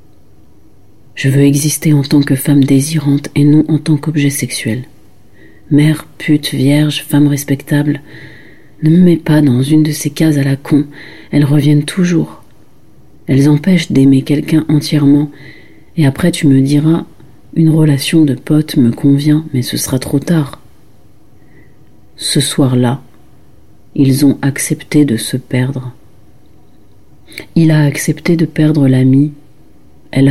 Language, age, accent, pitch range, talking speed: French, 40-59, French, 130-150 Hz, 140 wpm